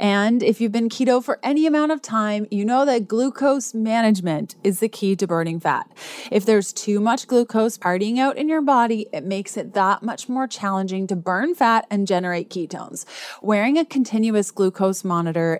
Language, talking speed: English, 190 wpm